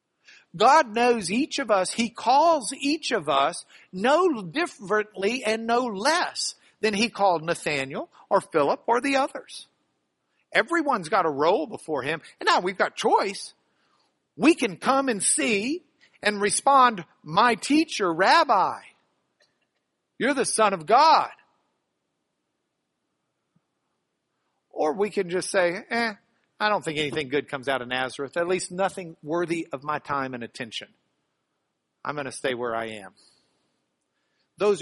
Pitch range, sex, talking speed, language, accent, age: 165-240 Hz, male, 140 wpm, English, American, 50-69